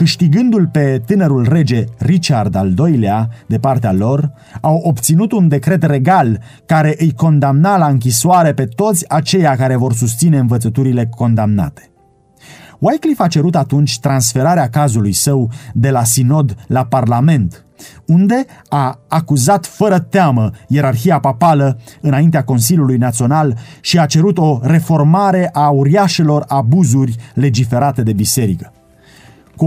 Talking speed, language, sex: 125 wpm, Romanian, male